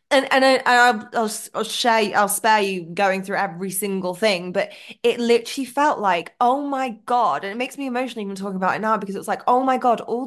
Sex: female